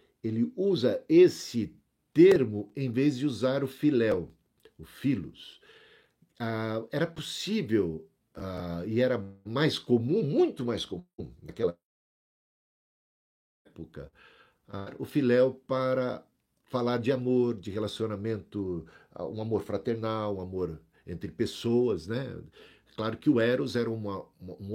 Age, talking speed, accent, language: 50-69, 120 wpm, Brazilian, Portuguese